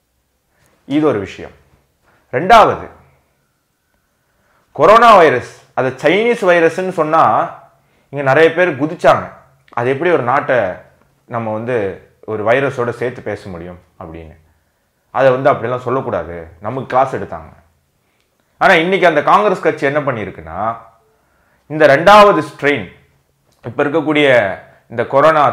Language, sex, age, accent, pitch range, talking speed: Tamil, male, 30-49, native, 100-165 Hz, 110 wpm